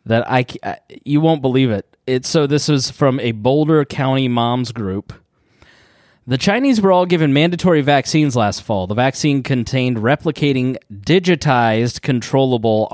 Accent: American